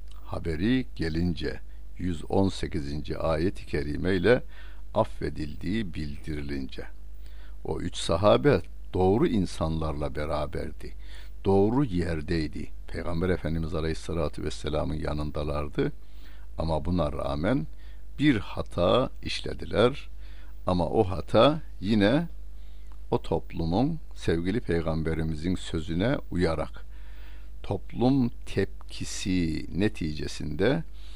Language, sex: Turkish, male